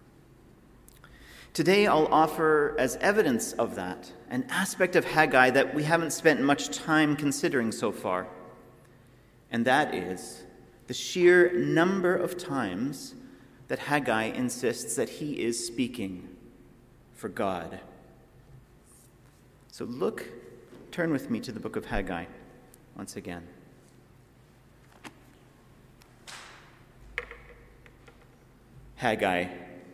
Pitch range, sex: 105-135 Hz, male